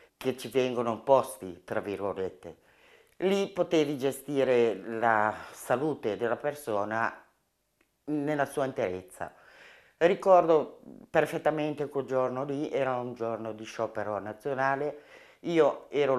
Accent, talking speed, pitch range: native, 110 wpm, 115-175 Hz